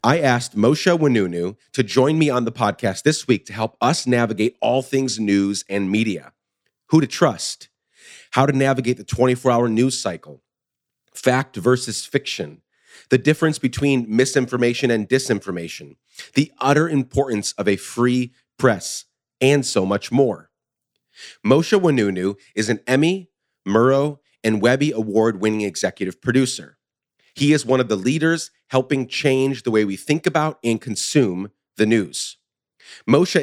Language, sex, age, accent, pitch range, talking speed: English, male, 30-49, American, 105-135 Hz, 145 wpm